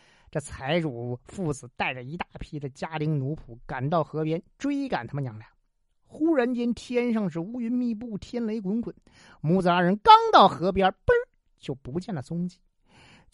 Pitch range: 140-225 Hz